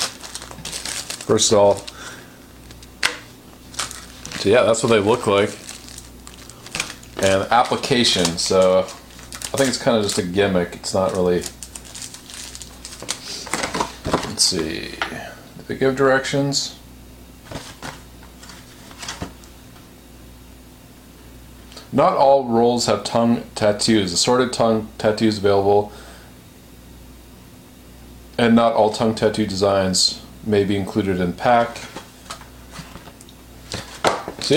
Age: 40-59